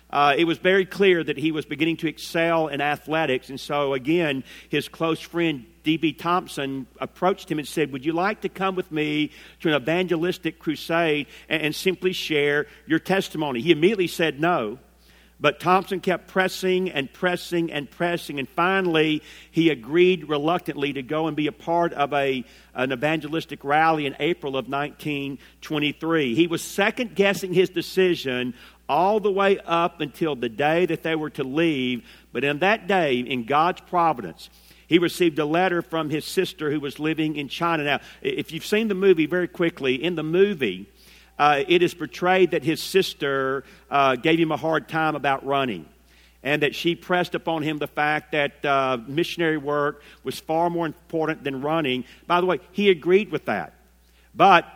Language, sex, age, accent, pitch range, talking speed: English, male, 50-69, American, 145-175 Hz, 175 wpm